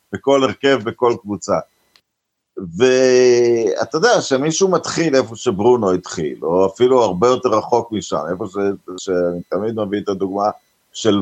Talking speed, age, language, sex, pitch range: 140 wpm, 50-69, Hebrew, male, 105-155 Hz